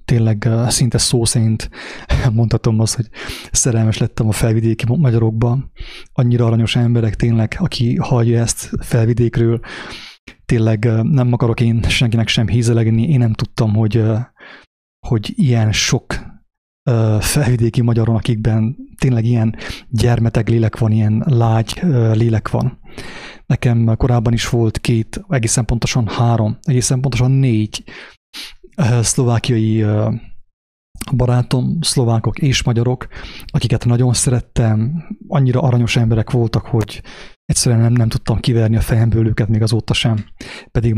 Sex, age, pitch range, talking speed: male, 30-49, 110-125 Hz, 120 wpm